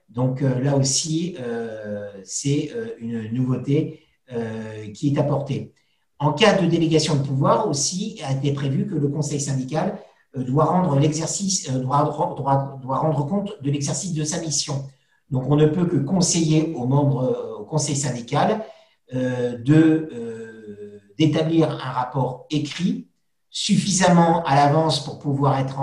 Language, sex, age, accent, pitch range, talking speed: French, male, 50-69, French, 135-160 Hz, 155 wpm